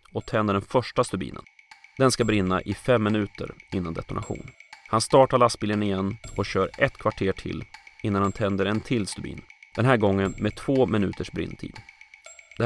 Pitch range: 95-120 Hz